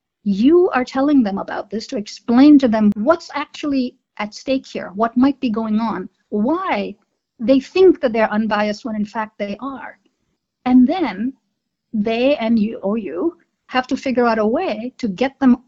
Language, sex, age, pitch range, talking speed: English, female, 50-69, 205-275 Hz, 180 wpm